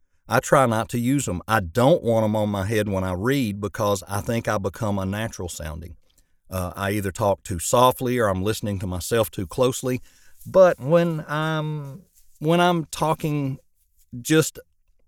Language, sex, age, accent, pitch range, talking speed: English, male, 40-59, American, 100-125 Hz, 170 wpm